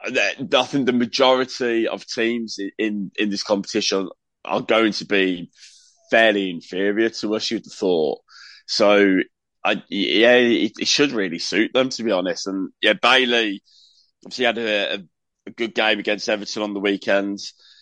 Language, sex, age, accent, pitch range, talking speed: English, male, 20-39, British, 95-115 Hz, 155 wpm